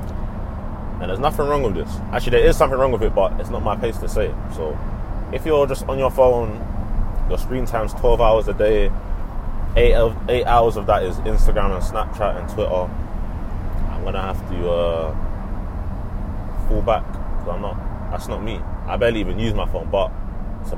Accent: British